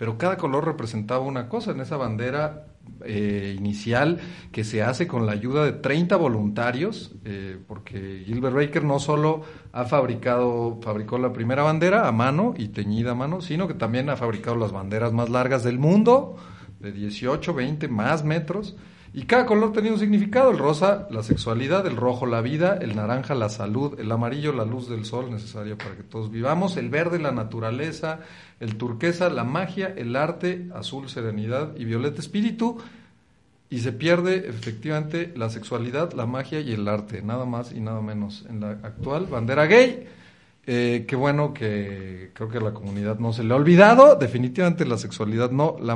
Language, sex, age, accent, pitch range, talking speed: Spanish, male, 40-59, Mexican, 110-155 Hz, 180 wpm